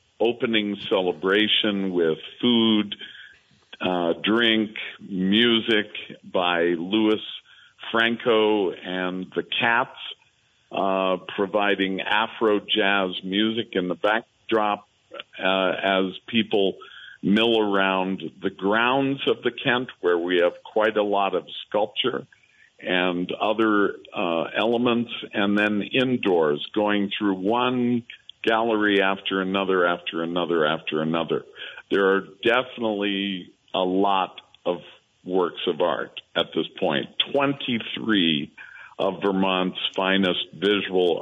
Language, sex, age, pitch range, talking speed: English, male, 50-69, 95-110 Hz, 110 wpm